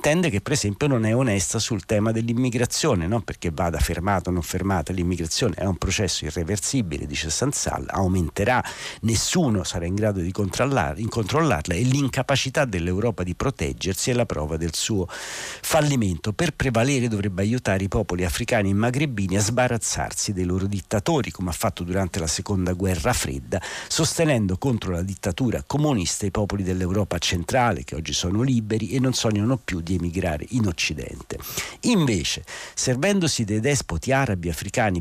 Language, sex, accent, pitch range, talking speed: Italian, male, native, 90-120 Hz, 155 wpm